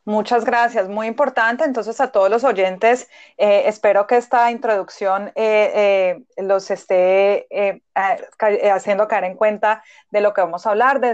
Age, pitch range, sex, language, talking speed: 30-49, 185-230 Hz, female, English, 165 wpm